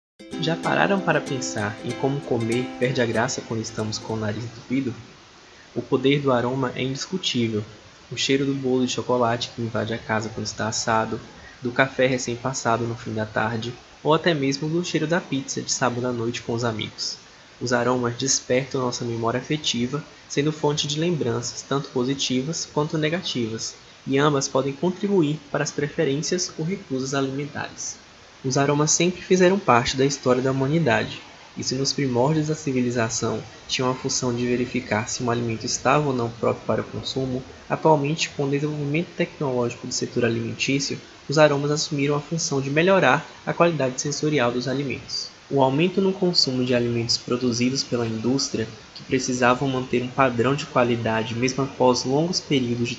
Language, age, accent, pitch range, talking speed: Portuguese, 20-39, Brazilian, 120-145 Hz, 170 wpm